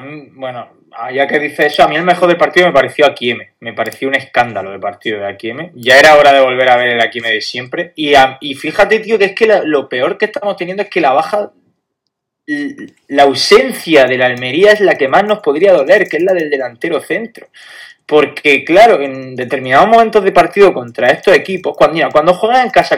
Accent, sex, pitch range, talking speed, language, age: Spanish, male, 135-210 Hz, 220 wpm, Spanish, 20-39